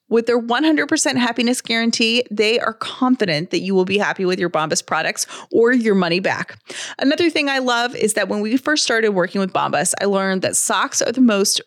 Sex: female